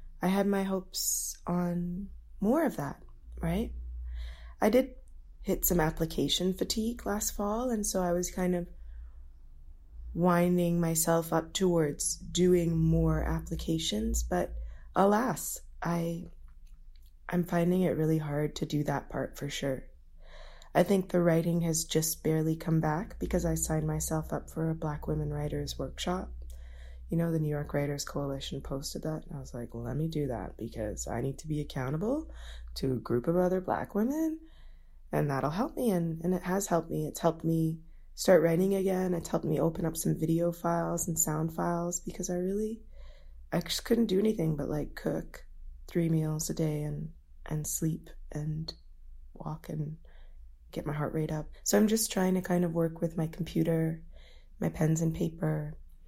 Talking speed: 175 wpm